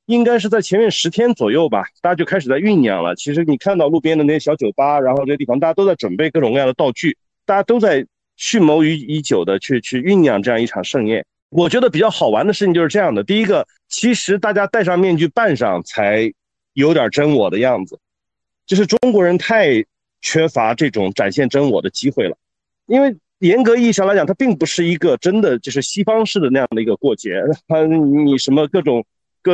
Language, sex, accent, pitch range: Chinese, male, native, 135-200 Hz